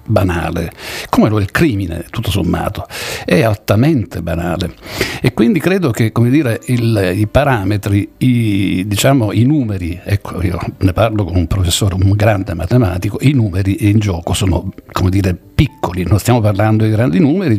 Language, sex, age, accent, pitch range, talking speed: Italian, male, 60-79, native, 95-115 Hz, 165 wpm